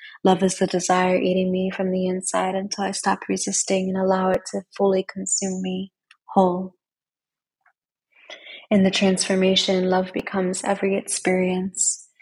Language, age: English, 20-39